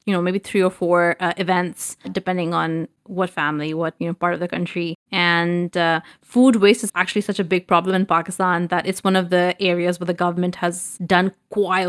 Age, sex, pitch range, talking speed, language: 20-39, female, 175-200 Hz, 215 wpm, English